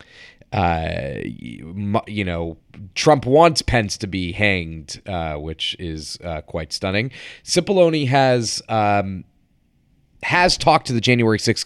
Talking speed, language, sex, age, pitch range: 125 wpm, English, male, 30-49, 95-125 Hz